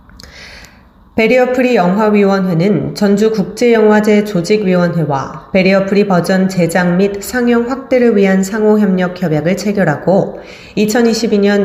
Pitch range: 170-210 Hz